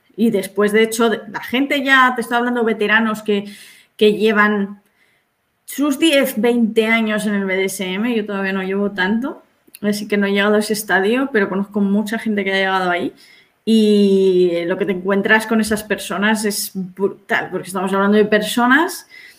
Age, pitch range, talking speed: 20-39, 200-240 Hz, 175 wpm